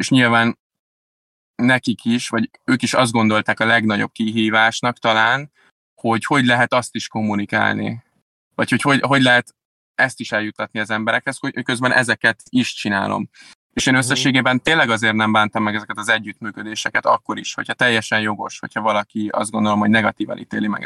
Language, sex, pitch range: Hungarian, male, 105-120 Hz